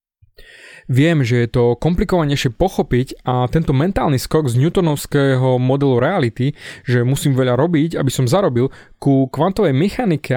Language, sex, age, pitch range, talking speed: Slovak, male, 20-39, 130-185 Hz, 140 wpm